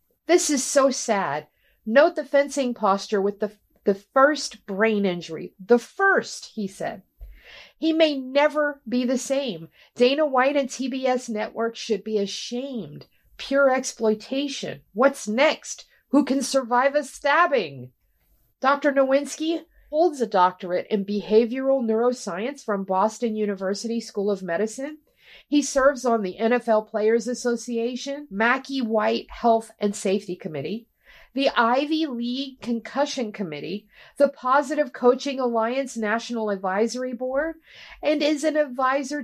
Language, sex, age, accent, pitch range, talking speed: English, female, 40-59, American, 215-280 Hz, 130 wpm